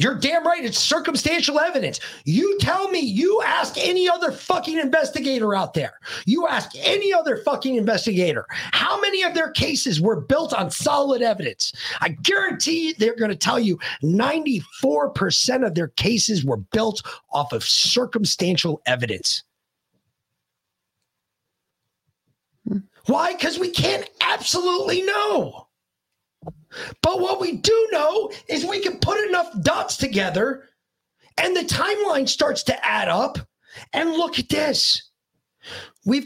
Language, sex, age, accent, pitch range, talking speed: English, male, 40-59, American, 225-340 Hz, 130 wpm